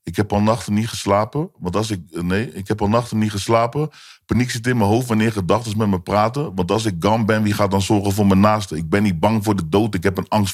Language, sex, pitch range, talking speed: Dutch, male, 95-110 Hz, 280 wpm